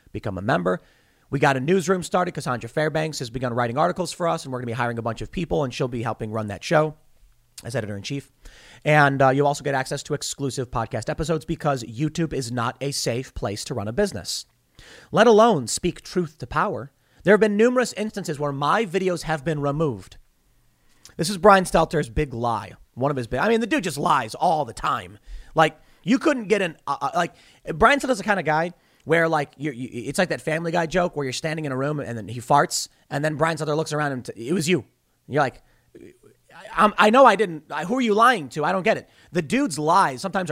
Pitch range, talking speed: 130-180 Hz, 240 wpm